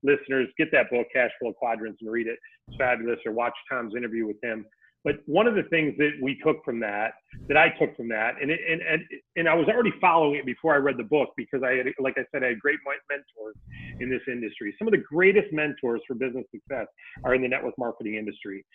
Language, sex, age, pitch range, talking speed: English, male, 40-59, 125-170 Hz, 240 wpm